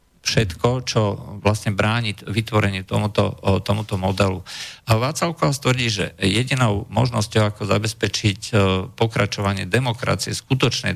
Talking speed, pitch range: 100 wpm, 100-115 Hz